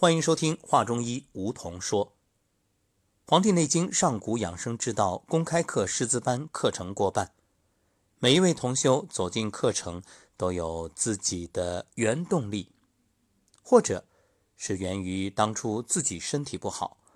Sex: male